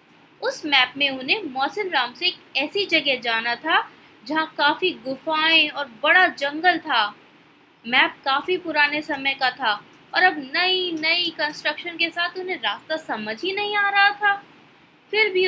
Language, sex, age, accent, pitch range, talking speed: Hindi, female, 20-39, native, 275-370 Hz, 165 wpm